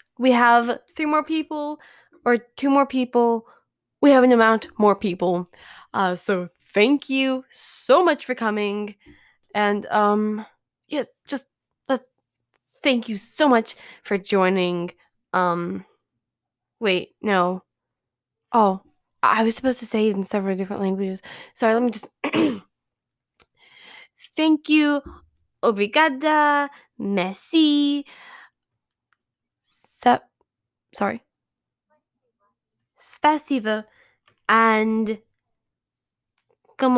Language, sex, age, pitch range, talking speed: English, female, 10-29, 195-260 Hz, 100 wpm